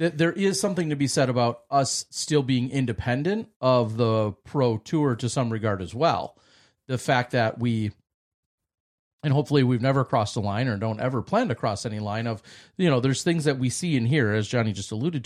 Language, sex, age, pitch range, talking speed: English, male, 40-59, 110-140 Hz, 210 wpm